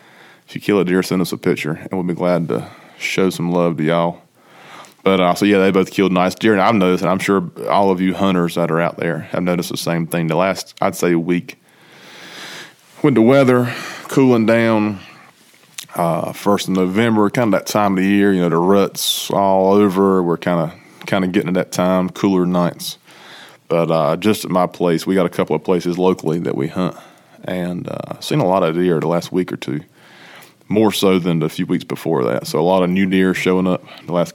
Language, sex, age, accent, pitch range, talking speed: English, male, 20-39, American, 85-100 Hz, 225 wpm